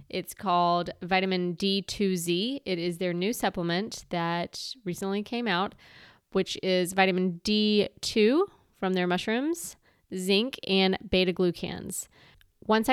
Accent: American